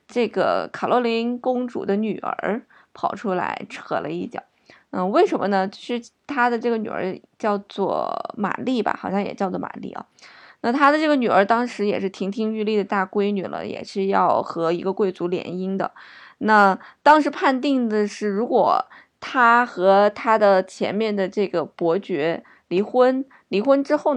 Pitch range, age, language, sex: 195-245 Hz, 20-39, Chinese, female